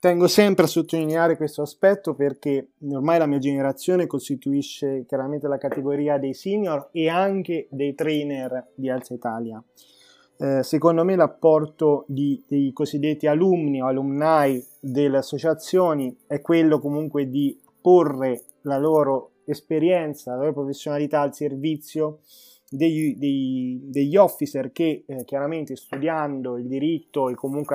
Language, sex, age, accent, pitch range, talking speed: Italian, male, 20-39, native, 135-155 Hz, 130 wpm